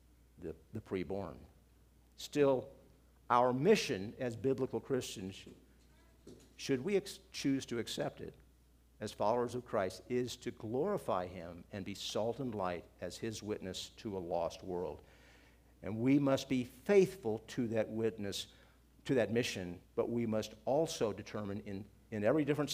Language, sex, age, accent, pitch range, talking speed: English, male, 50-69, American, 95-130 Hz, 140 wpm